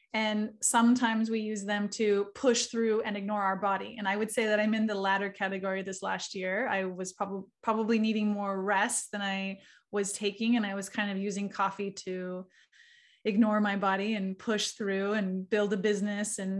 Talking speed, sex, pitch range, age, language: 200 wpm, female, 200-240 Hz, 20-39, English